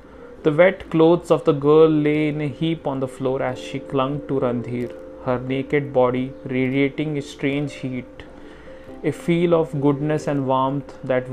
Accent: Indian